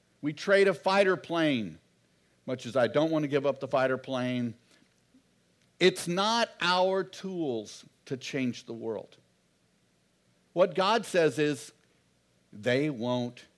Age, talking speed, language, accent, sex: 60-79, 135 wpm, English, American, male